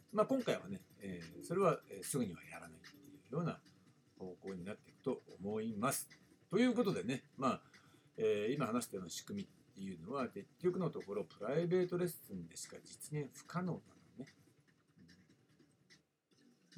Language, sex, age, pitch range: Japanese, male, 60-79, 130-190 Hz